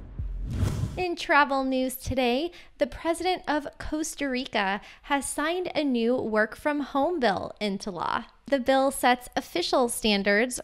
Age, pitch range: 20-39, 220-275 Hz